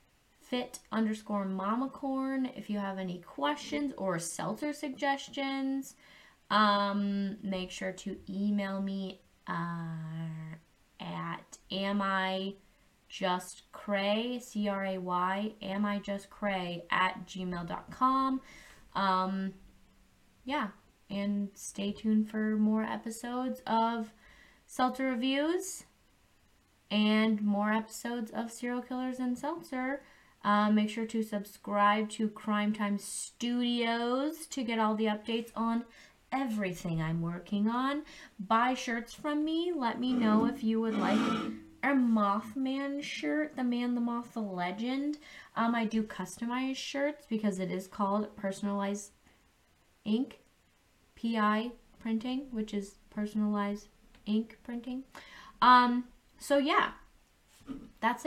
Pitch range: 200-255 Hz